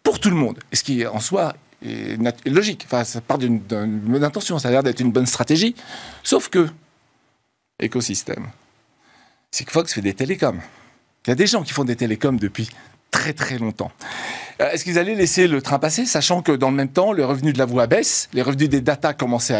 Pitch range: 125-170 Hz